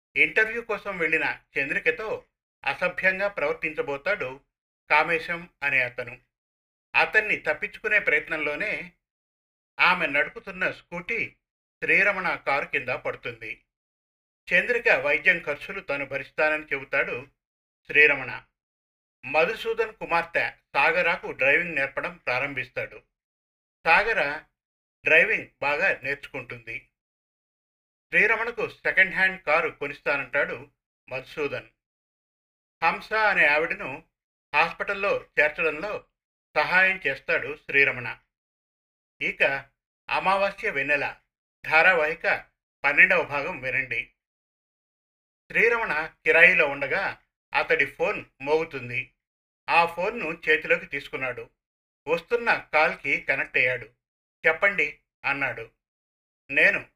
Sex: male